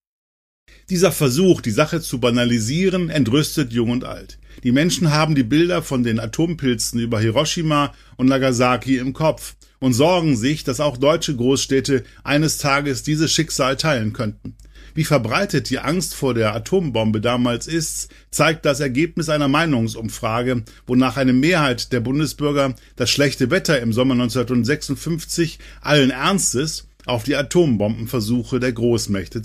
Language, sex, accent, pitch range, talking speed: German, male, German, 120-150 Hz, 140 wpm